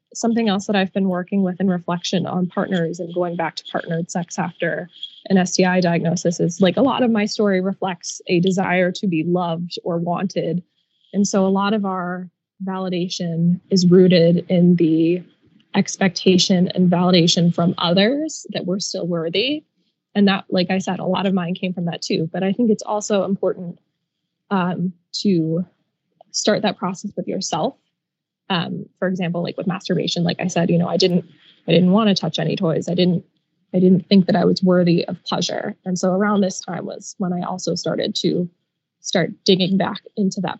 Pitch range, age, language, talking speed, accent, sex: 175-195 Hz, 20-39, English, 190 wpm, American, female